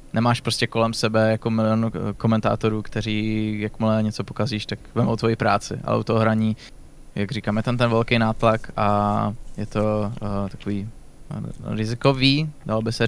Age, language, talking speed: 20-39, Slovak, 170 wpm